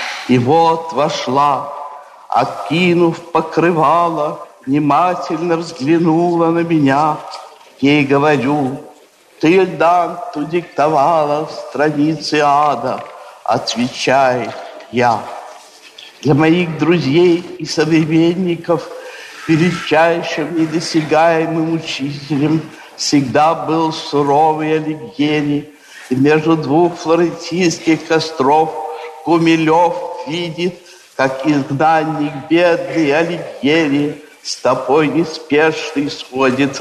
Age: 60-79